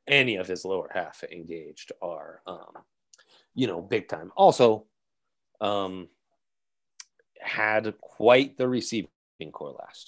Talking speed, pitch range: 120 wpm, 95-125 Hz